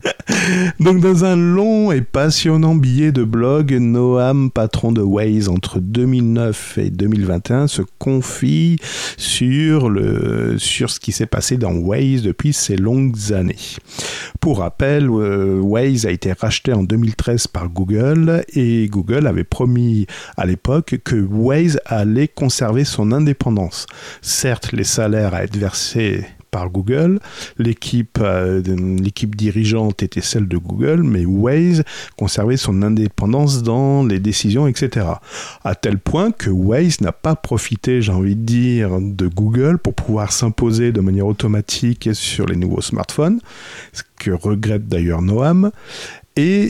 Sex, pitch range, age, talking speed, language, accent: male, 100-140 Hz, 50-69, 140 wpm, French, French